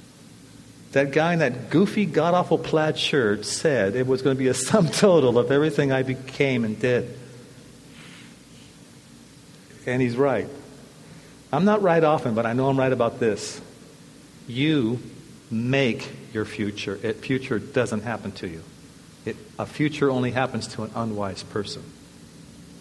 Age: 50-69